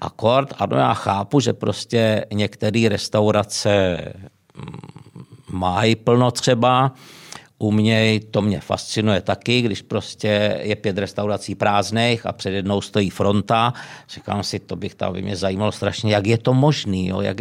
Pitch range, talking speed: 100-120 Hz, 150 wpm